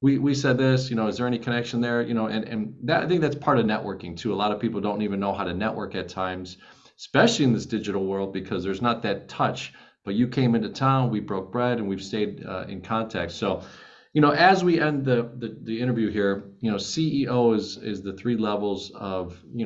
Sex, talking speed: male, 245 wpm